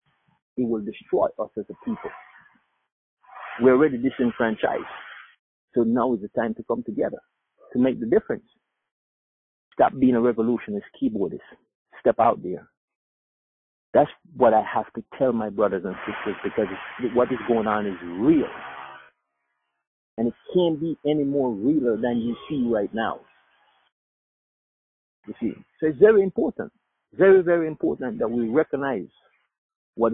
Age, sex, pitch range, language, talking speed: 50-69, male, 115-155 Hz, English, 145 wpm